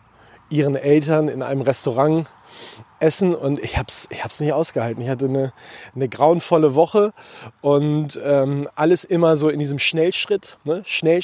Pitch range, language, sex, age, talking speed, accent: 135-165 Hz, German, male, 30-49, 155 wpm, German